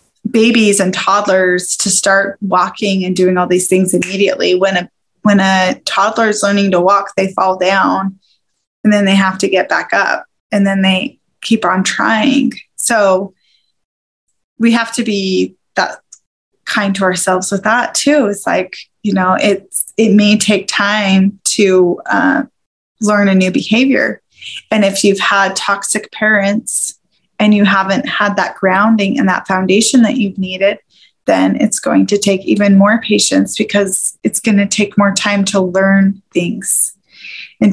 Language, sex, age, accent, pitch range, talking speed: English, female, 20-39, American, 190-225 Hz, 160 wpm